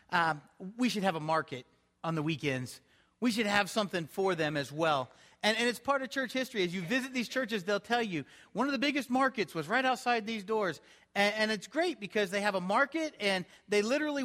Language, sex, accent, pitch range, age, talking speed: English, male, American, 155-210 Hz, 40-59, 230 wpm